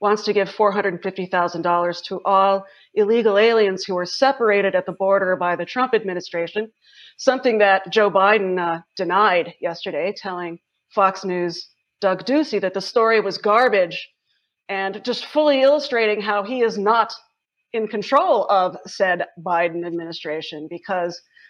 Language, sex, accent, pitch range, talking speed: English, female, American, 185-225 Hz, 140 wpm